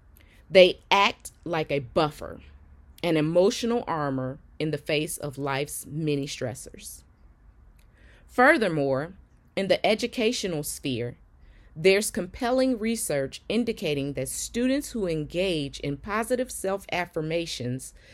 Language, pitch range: English, 140-195 Hz